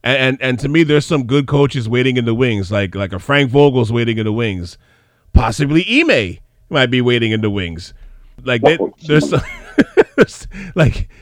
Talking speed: 185 wpm